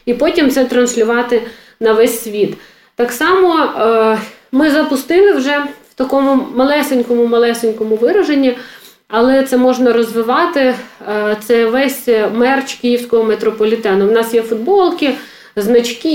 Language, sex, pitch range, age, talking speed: Ukrainian, female, 225-270 Hz, 40-59, 110 wpm